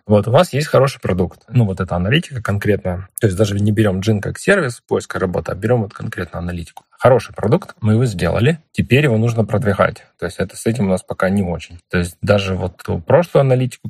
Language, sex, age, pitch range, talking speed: Ukrainian, male, 20-39, 95-115 Hz, 230 wpm